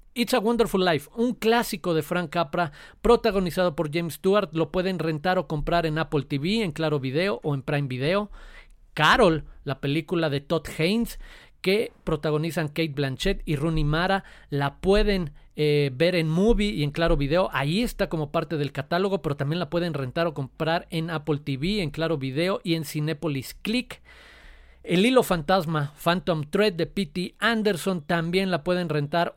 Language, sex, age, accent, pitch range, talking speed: Spanish, male, 40-59, Mexican, 155-195 Hz, 175 wpm